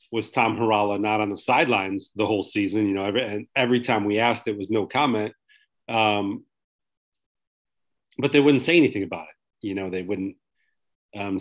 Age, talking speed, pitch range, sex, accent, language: 40-59, 180 wpm, 105-120 Hz, male, American, English